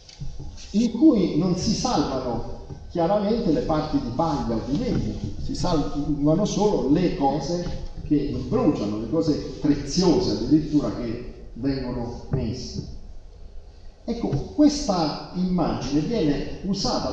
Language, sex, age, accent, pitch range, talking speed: Italian, male, 40-59, native, 120-175 Hz, 110 wpm